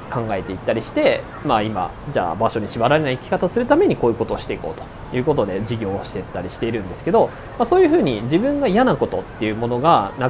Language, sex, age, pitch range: Japanese, male, 20-39, 110-165 Hz